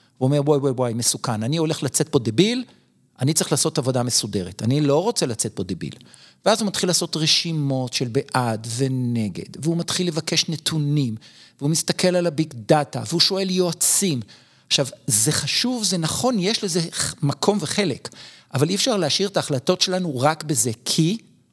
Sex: male